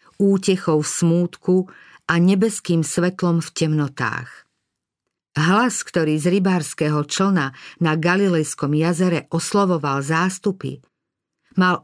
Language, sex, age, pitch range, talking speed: Slovak, female, 50-69, 155-190 Hz, 95 wpm